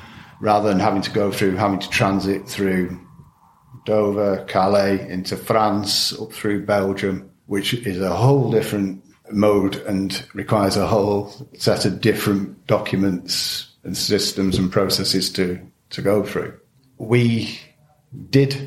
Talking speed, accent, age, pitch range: 130 wpm, British, 50-69, 95-115 Hz